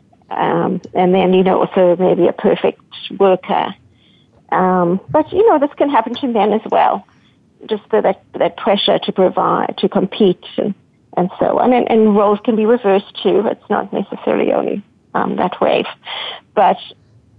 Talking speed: 175 wpm